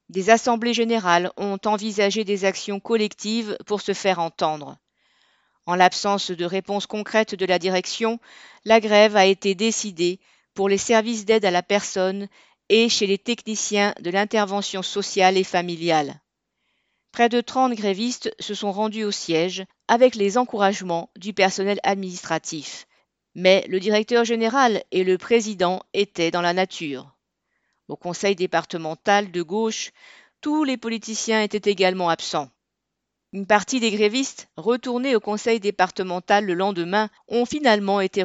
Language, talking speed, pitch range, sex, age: French, 145 wpm, 185-225 Hz, female, 50-69